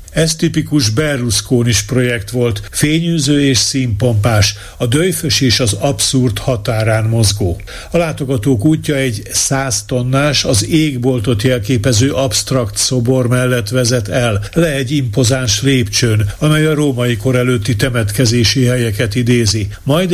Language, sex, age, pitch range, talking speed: Hungarian, male, 50-69, 115-140 Hz, 125 wpm